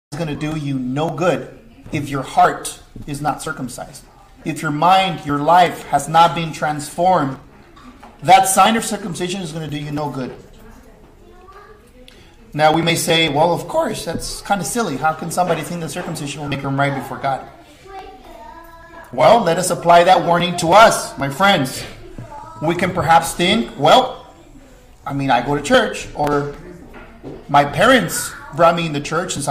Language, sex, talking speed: English, male, 175 wpm